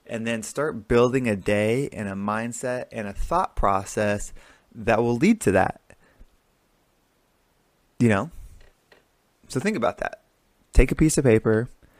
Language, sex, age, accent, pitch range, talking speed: English, male, 20-39, American, 105-120 Hz, 145 wpm